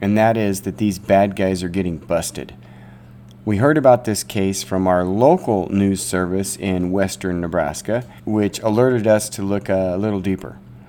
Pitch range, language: 95-125 Hz, English